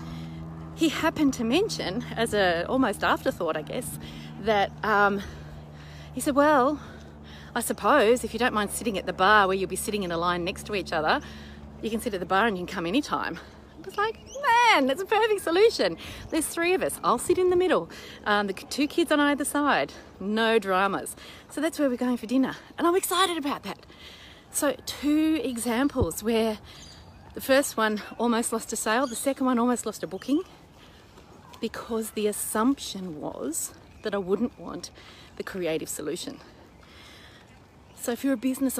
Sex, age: female, 30-49